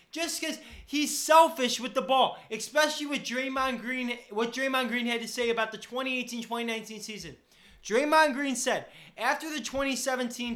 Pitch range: 220-270 Hz